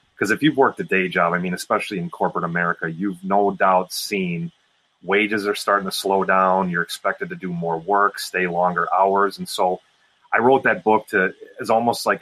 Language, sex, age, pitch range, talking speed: English, male, 30-49, 90-110 Hz, 205 wpm